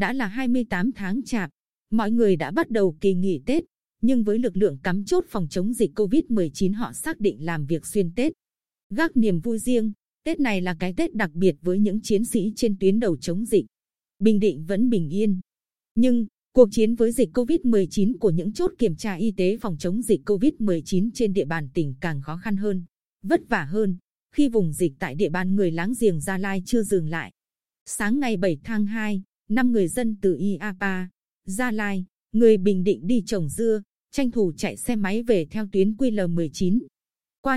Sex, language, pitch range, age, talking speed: female, Vietnamese, 185-235 Hz, 20-39, 200 wpm